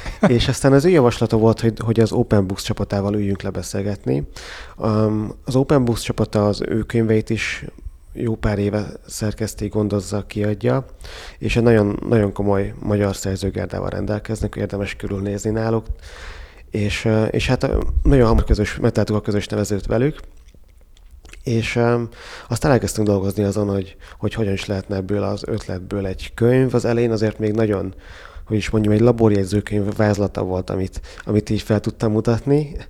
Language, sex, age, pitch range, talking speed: Hungarian, male, 30-49, 100-115 Hz, 150 wpm